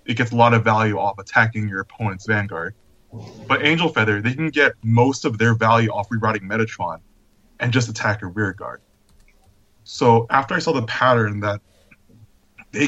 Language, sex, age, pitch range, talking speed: English, male, 20-39, 105-125 Hz, 170 wpm